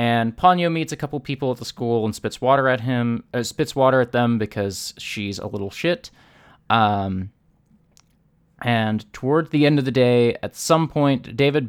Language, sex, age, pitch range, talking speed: English, male, 20-39, 110-150 Hz, 185 wpm